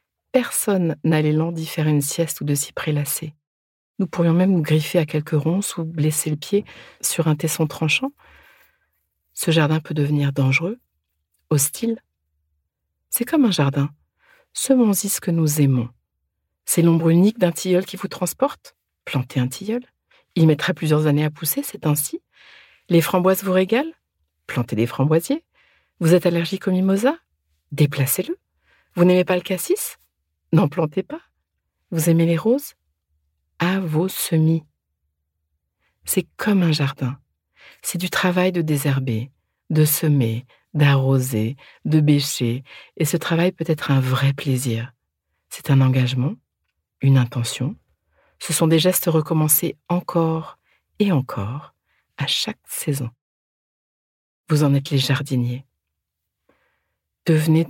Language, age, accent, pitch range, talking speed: French, 50-69, French, 130-175 Hz, 140 wpm